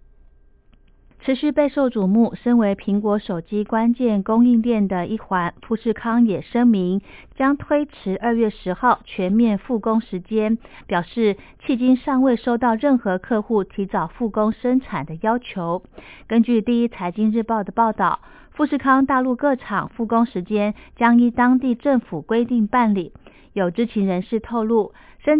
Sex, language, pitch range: female, Chinese, 195-240 Hz